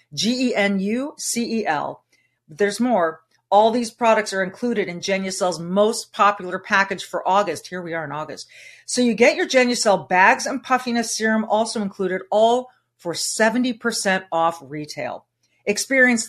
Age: 40-59